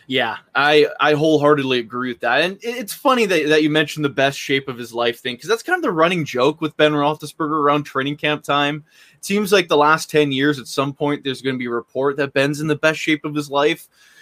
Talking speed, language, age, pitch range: 255 wpm, English, 20-39, 145-215 Hz